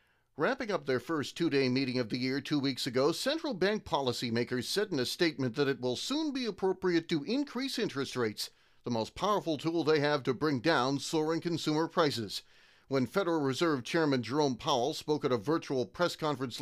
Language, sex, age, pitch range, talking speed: English, male, 40-59, 135-190 Hz, 190 wpm